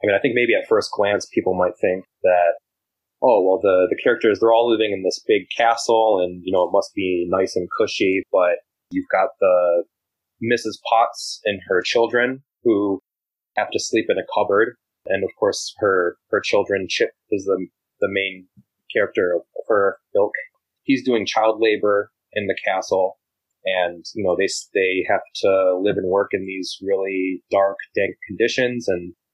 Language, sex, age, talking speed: English, male, 20-39, 180 wpm